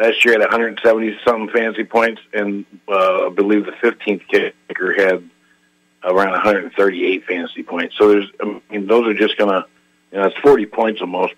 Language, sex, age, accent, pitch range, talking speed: English, male, 50-69, American, 100-120 Hz, 175 wpm